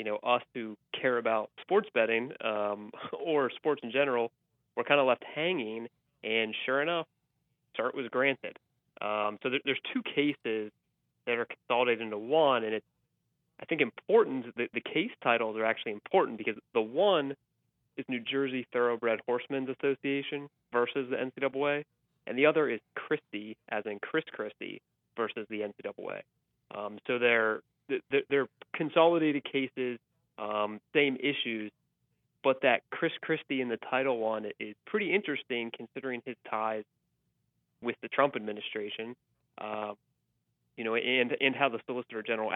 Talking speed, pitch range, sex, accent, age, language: 150 wpm, 110-140 Hz, male, American, 30-49, English